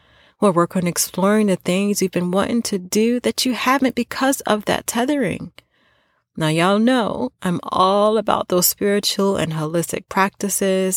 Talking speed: 160 wpm